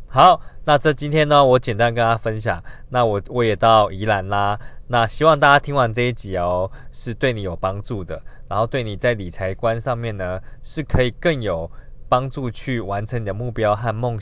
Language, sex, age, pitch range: Chinese, male, 20-39, 105-130 Hz